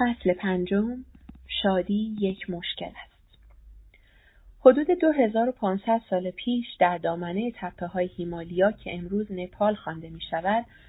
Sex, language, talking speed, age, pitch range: female, Persian, 105 wpm, 30-49, 170-205 Hz